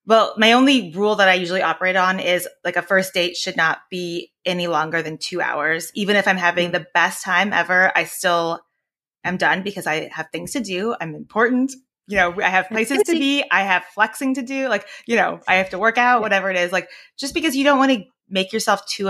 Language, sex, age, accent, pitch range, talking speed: English, female, 20-39, American, 175-225 Hz, 235 wpm